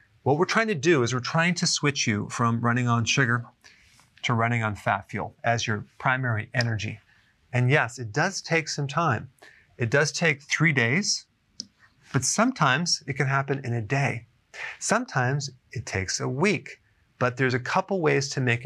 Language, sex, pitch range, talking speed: English, male, 115-140 Hz, 180 wpm